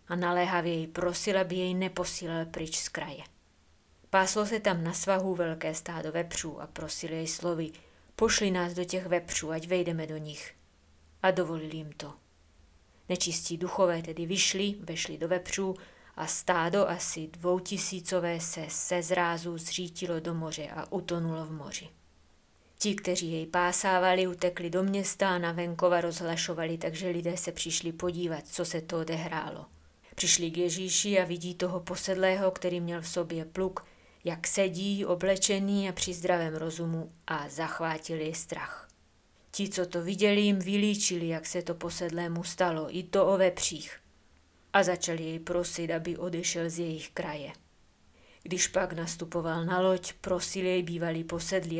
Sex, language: female, Czech